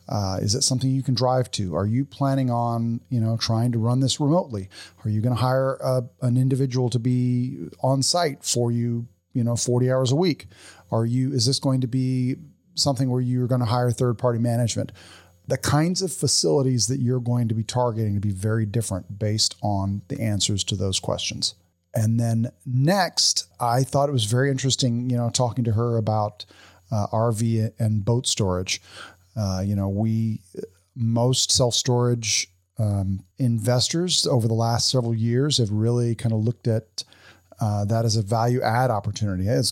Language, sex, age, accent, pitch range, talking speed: English, male, 40-59, American, 110-130 Hz, 185 wpm